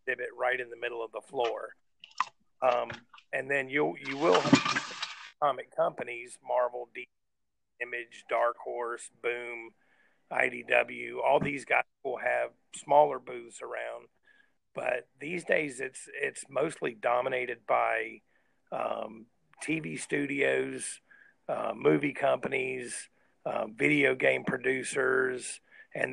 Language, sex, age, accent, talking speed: English, male, 40-59, American, 115 wpm